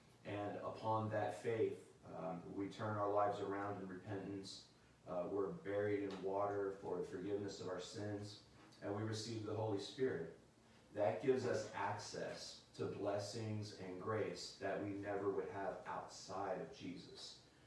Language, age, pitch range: English, 30-49, 100-115 Hz